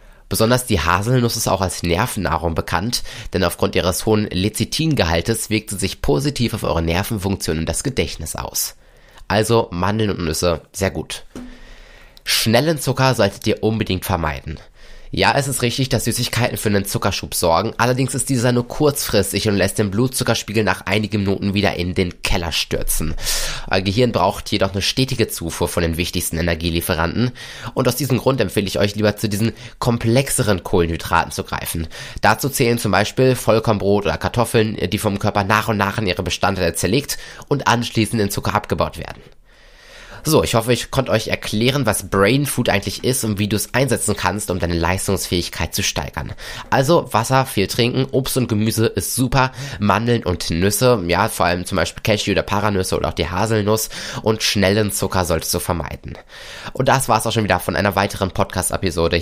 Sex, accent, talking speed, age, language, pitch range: male, German, 175 wpm, 20-39, German, 90-115 Hz